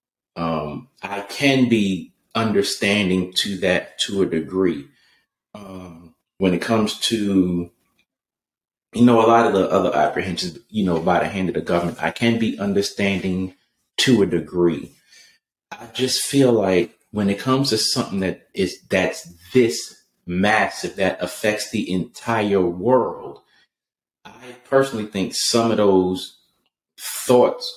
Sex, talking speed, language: male, 140 wpm, English